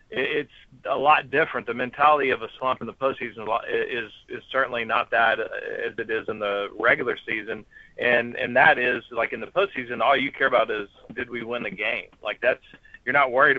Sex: male